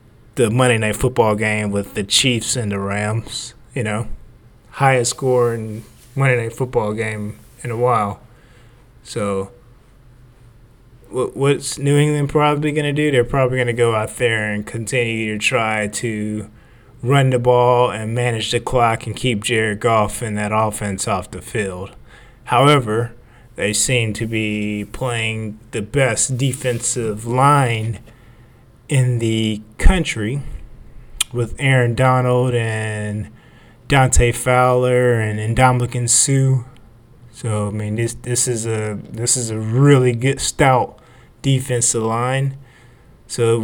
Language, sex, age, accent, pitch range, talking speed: English, male, 20-39, American, 110-125 Hz, 140 wpm